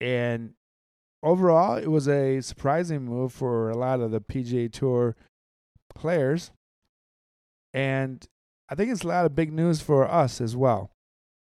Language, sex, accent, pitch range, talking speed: English, male, American, 115-145 Hz, 145 wpm